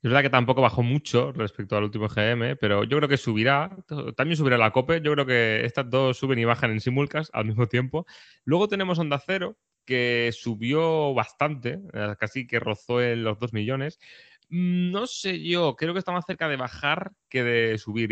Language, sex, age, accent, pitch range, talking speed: Spanish, male, 20-39, Spanish, 110-140 Hz, 195 wpm